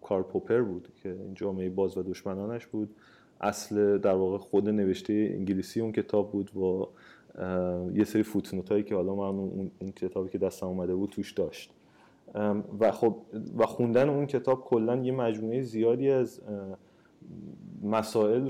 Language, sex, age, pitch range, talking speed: Persian, male, 30-49, 95-110 Hz, 150 wpm